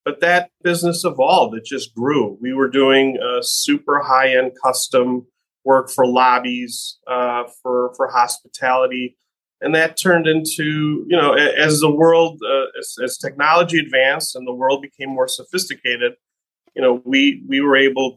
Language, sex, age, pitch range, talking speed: English, male, 30-49, 125-155 Hz, 160 wpm